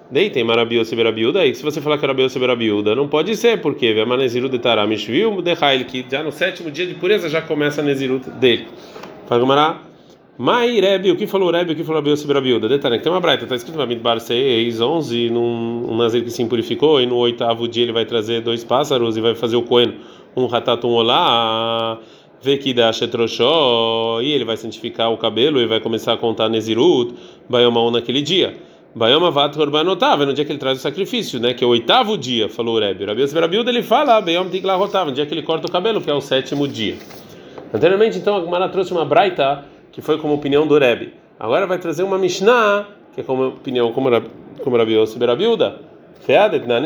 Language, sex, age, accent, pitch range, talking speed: Portuguese, male, 20-39, Brazilian, 115-160 Hz, 205 wpm